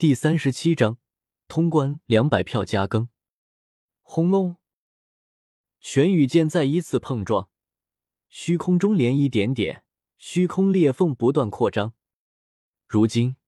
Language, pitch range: Chinese, 120-170 Hz